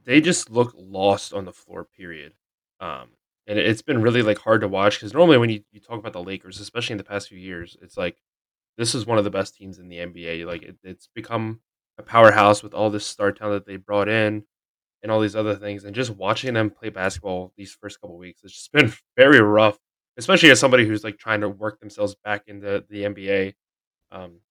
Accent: American